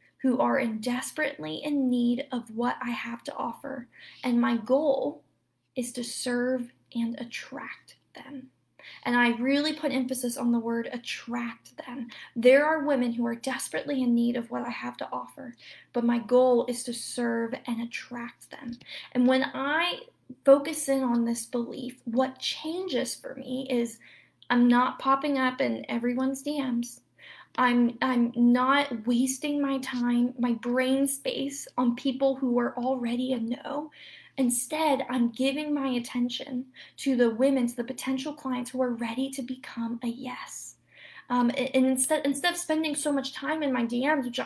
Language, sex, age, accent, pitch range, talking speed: English, female, 10-29, American, 240-270 Hz, 165 wpm